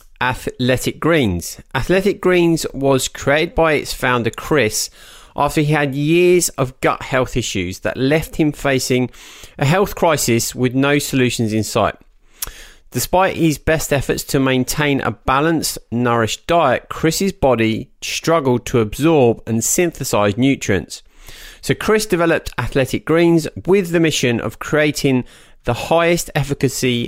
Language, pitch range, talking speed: English, 115-155 Hz, 135 wpm